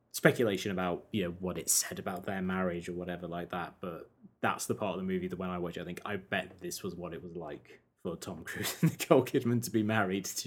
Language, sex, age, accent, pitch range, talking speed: English, male, 20-39, British, 85-100 Hz, 260 wpm